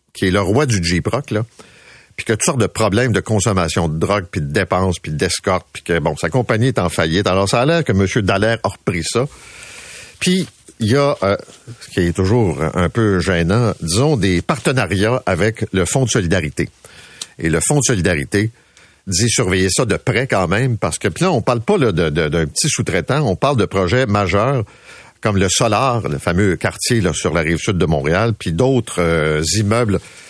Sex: male